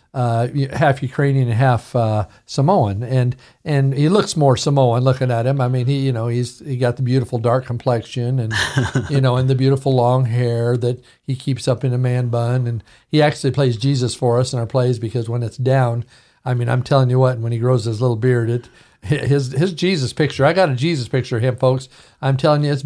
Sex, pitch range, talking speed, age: male, 120-140 Hz, 230 wpm, 50-69